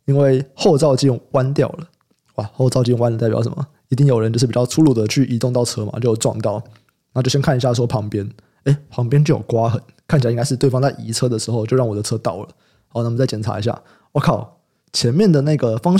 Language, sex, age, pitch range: Chinese, male, 20-39, 120-145 Hz